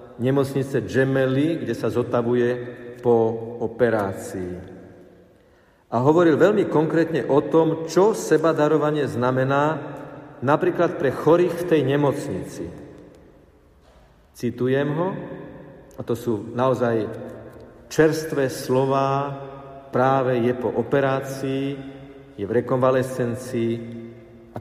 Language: Slovak